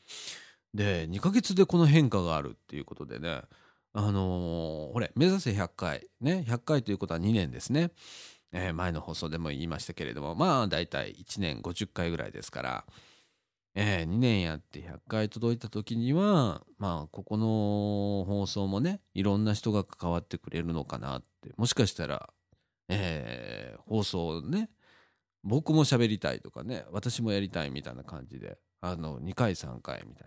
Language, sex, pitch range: Japanese, male, 85-115 Hz